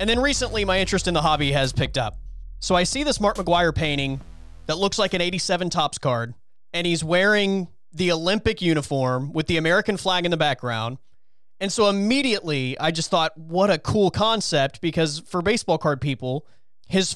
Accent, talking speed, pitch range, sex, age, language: American, 190 wpm, 135-185 Hz, male, 30-49, English